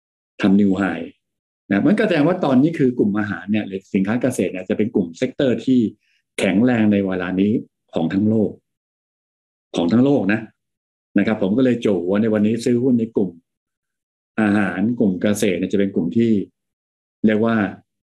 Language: Thai